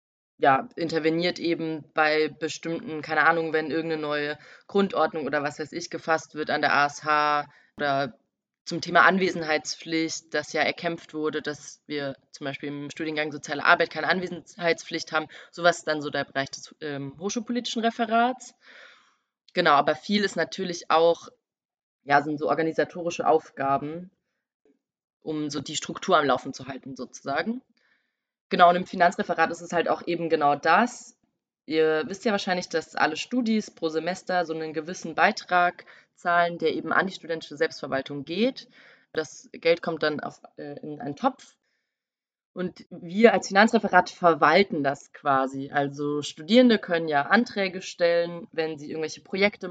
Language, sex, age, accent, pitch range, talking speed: German, female, 20-39, German, 150-180 Hz, 150 wpm